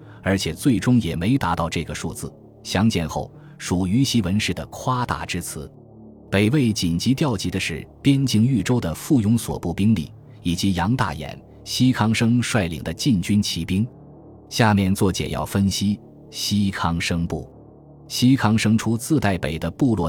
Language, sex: Chinese, male